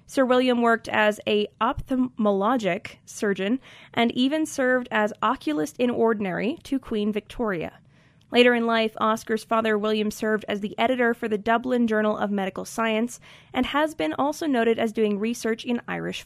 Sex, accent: female, American